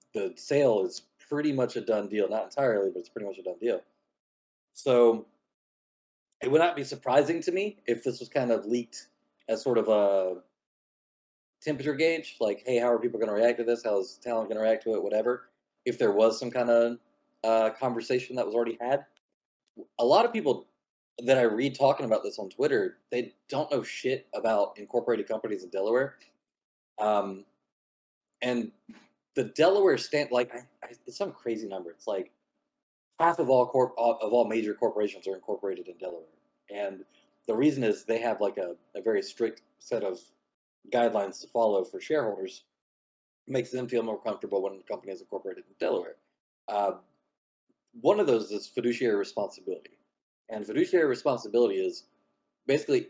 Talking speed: 180 wpm